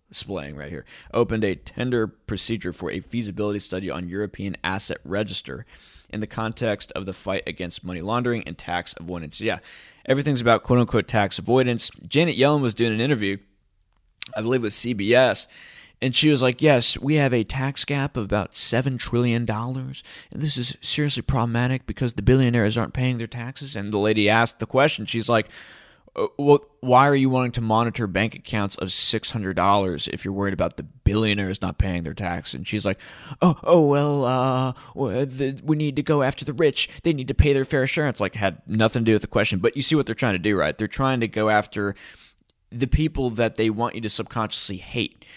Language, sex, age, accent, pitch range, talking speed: English, male, 20-39, American, 100-130 Hz, 200 wpm